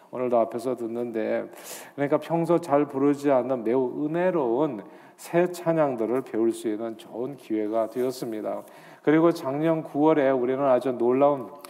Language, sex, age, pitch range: Korean, male, 40-59, 120-160 Hz